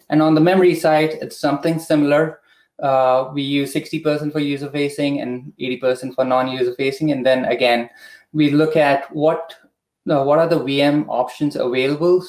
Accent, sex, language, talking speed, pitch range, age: Indian, male, English, 155 wpm, 130-160 Hz, 20-39